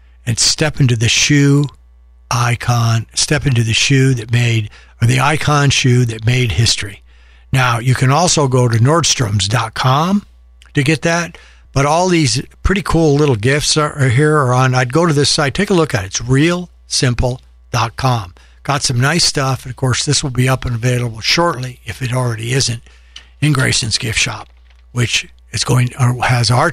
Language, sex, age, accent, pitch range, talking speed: English, male, 60-79, American, 105-140 Hz, 180 wpm